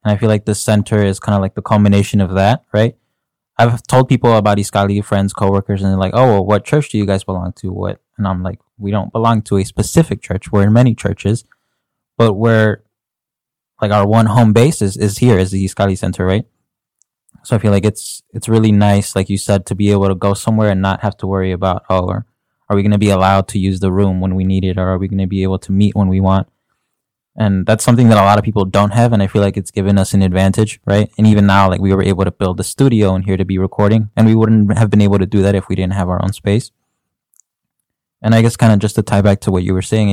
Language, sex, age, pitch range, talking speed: English, male, 20-39, 95-110 Hz, 270 wpm